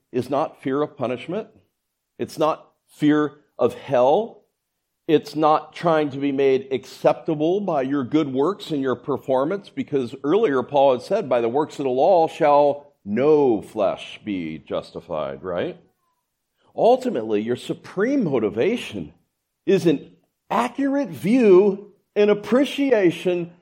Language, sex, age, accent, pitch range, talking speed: English, male, 50-69, American, 130-185 Hz, 130 wpm